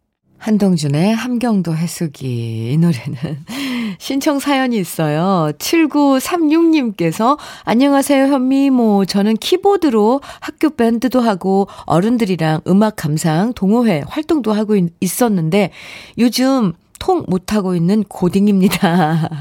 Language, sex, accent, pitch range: Korean, female, native, 175-255 Hz